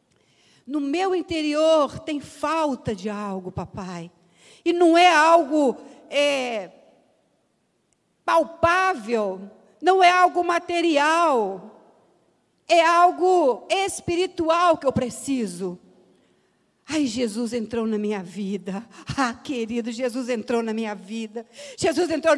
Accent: Brazilian